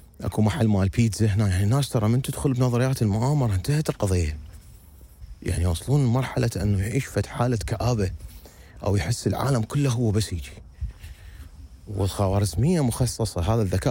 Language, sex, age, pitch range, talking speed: Arabic, male, 30-49, 90-125 Hz, 140 wpm